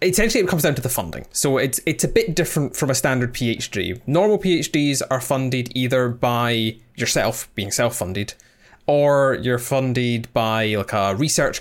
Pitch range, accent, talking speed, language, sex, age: 115-140 Hz, British, 170 wpm, English, male, 20-39